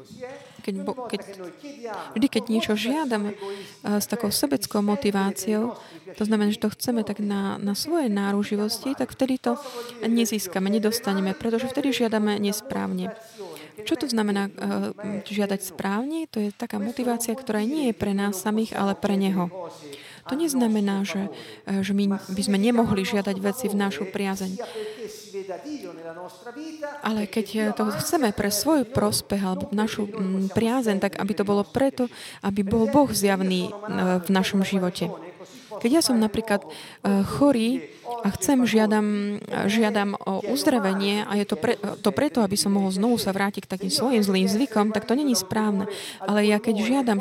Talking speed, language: 145 wpm, Slovak